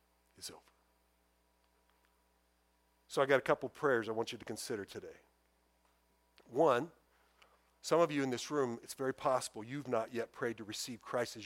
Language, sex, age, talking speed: English, male, 50-69, 155 wpm